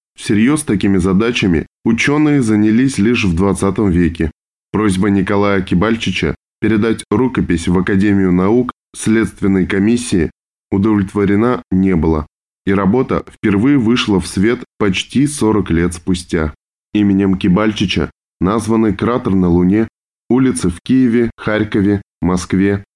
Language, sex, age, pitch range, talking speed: Russian, male, 10-29, 90-110 Hz, 110 wpm